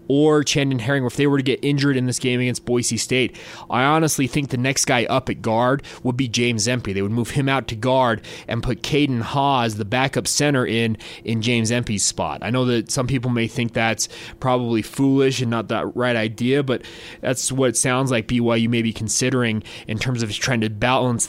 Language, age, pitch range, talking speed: English, 20-39, 115-135 Hz, 220 wpm